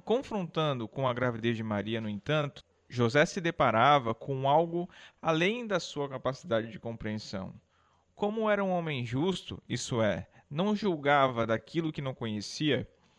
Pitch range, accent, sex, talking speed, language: 120-175 Hz, Brazilian, male, 145 wpm, Portuguese